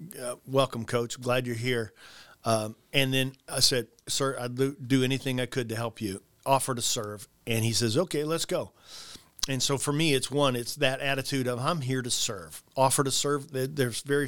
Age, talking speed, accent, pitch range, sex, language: 40-59, 200 wpm, American, 120-140 Hz, male, English